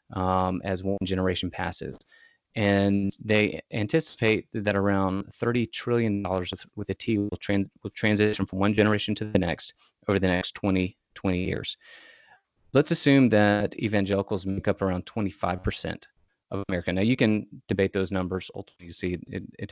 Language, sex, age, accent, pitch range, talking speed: English, male, 30-49, American, 95-115 Hz, 160 wpm